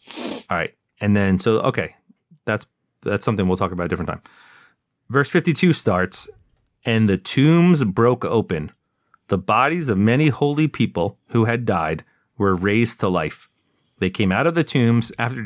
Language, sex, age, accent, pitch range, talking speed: English, male, 30-49, American, 95-125 Hz, 165 wpm